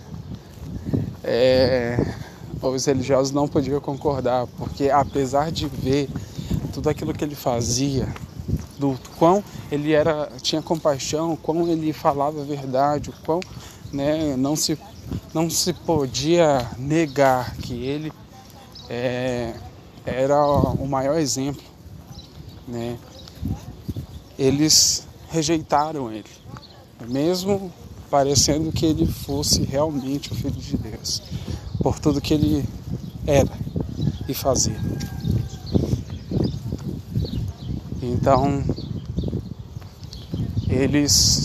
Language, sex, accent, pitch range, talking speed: Portuguese, male, Brazilian, 120-155 Hz, 95 wpm